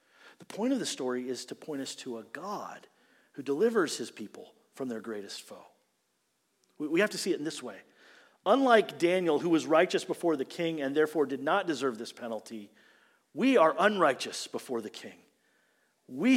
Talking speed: 185 wpm